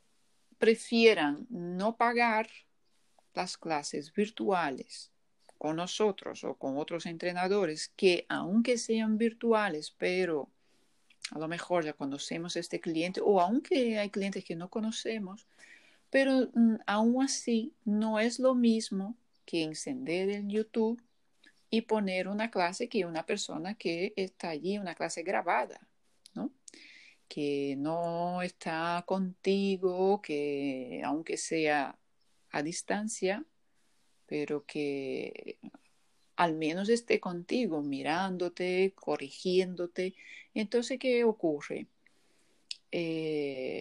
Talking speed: 105 wpm